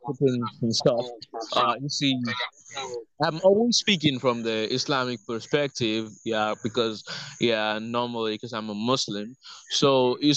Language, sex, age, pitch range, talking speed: English, male, 20-39, 115-145 Hz, 125 wpm